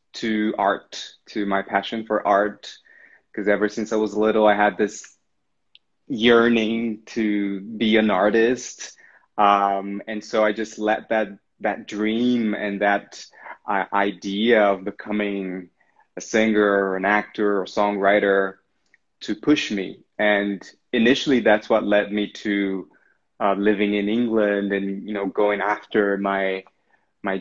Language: English